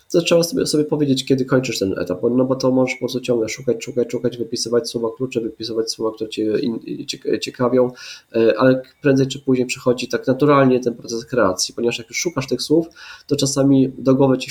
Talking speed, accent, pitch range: 195 wpm, native, 110-130 Hz